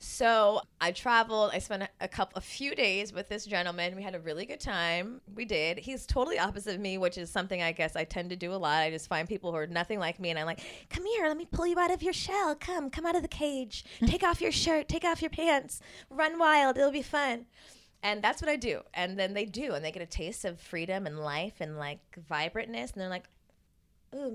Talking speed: 255 wpm